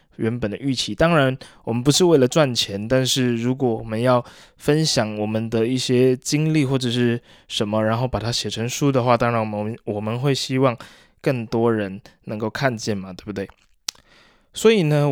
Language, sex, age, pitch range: Chinese, male, 20-39, 110-140 Hz